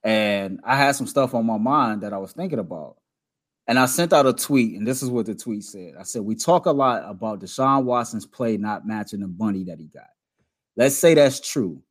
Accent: American